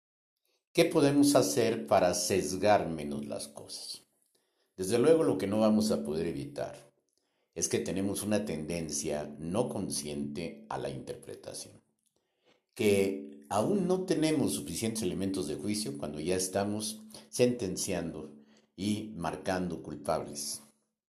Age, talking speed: 50-69, 120 wpm